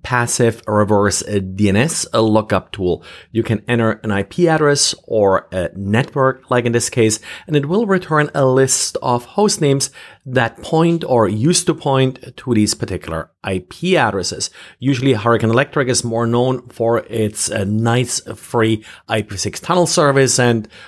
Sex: male